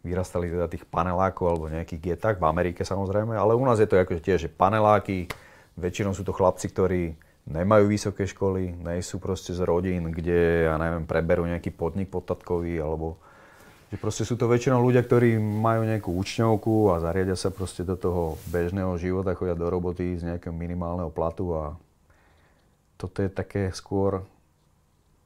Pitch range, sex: 85-100 Hz, male